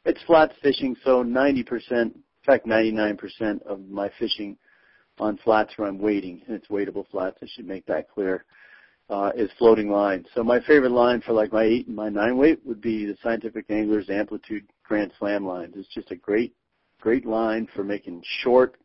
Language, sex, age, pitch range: English, male, 50-69, 100-115 Hz